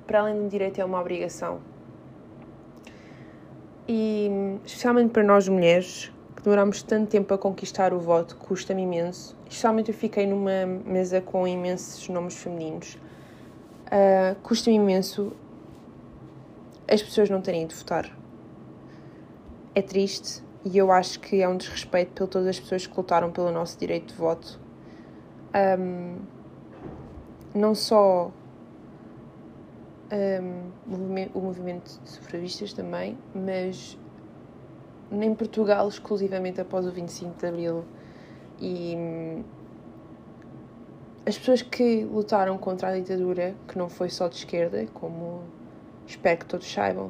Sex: female